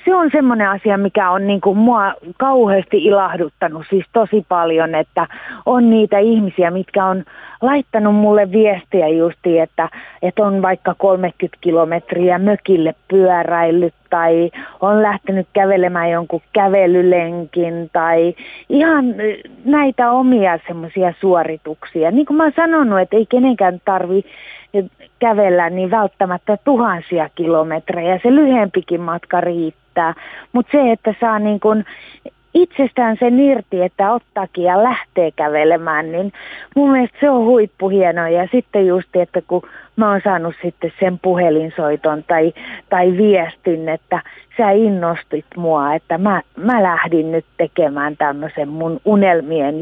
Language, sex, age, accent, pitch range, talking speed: Finnish, female, 30-49, native, 170-215 Hz, 130 wpm